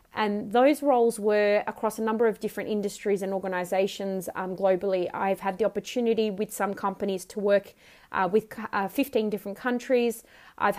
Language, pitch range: English, 195-215 Hz